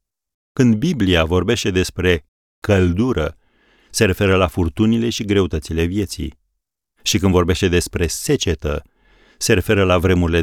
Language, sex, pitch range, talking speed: Romanian, male, 80-105 Hz, 120 wpm